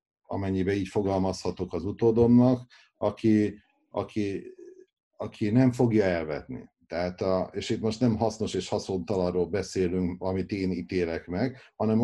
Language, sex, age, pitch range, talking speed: Hungarian, male, 50-69, 90-115 Hz, 130 wpm